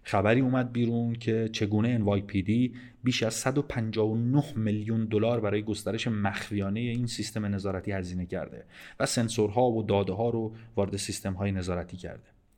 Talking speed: 145 wpm